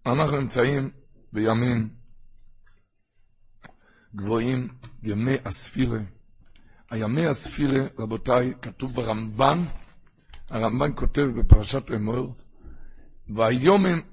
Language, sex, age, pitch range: Hebrew, male, 60-79, 110-150 Hz